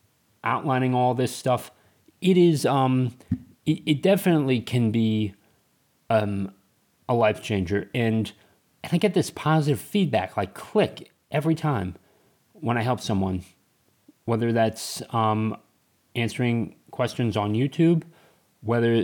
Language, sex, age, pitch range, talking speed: English, male, 30-49, 105-140 Hz, 125 wpm